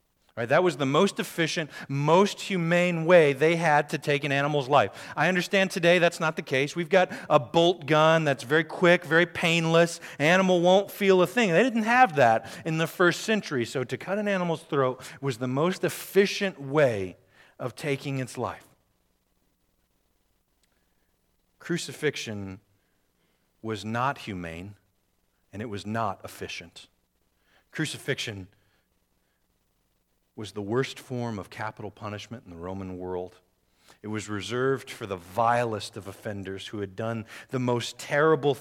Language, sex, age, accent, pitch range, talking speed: English, male, 40-59, American, 100-150 Hz, 150 wpm